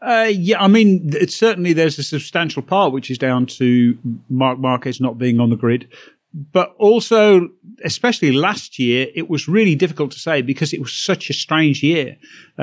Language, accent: English, British